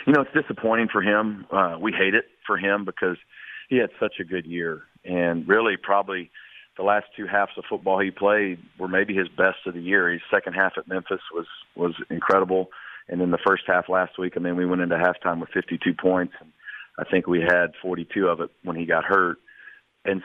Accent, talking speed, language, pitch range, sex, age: American, 220 wpm, English, 90-100 Hz, male, 40-59